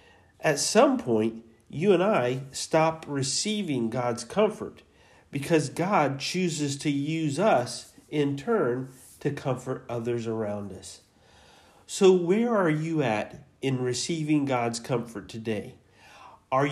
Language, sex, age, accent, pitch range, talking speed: English, male, 40-59, American, 120-160 Hz, 120 wpm